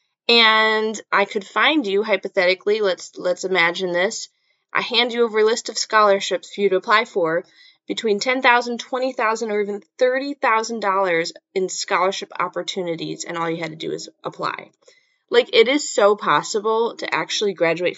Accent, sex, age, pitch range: American, female, 20-39, 185-245 Hz